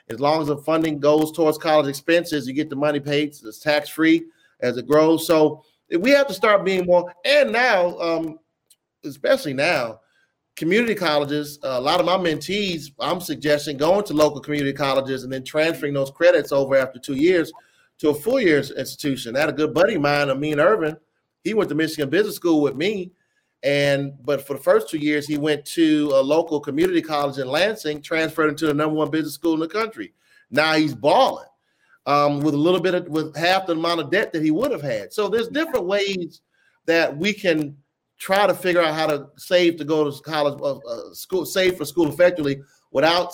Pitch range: 145-170 Hz